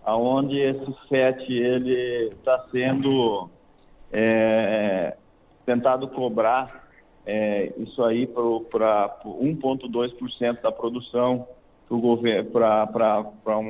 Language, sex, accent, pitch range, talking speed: Portuguese, male, Brazilian, 115-135 Hz, 75 wpm